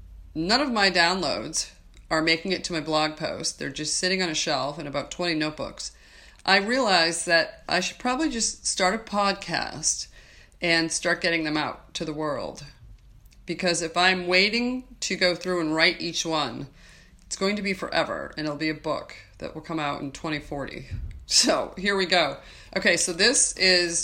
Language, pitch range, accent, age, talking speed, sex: English, 155-190 Hz, American, 30-49, 185 wpm, female